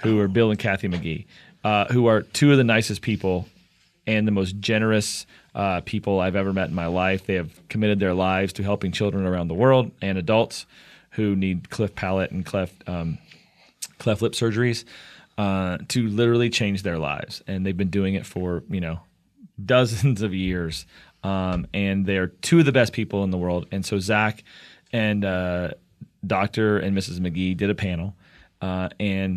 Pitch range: 95-115 Hz